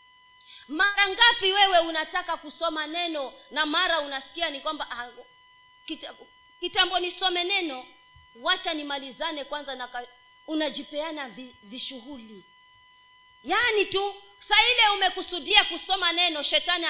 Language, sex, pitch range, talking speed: Swahili, female, 255-390 Hz, 105 wpm